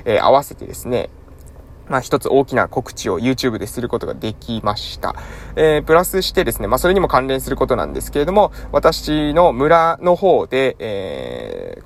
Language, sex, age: Japanese, male, 20-39